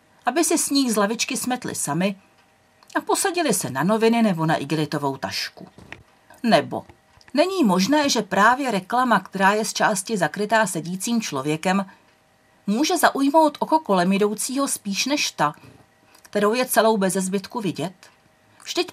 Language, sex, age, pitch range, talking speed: Czech, female, 40-59, 170-240 Hz, 140 wpm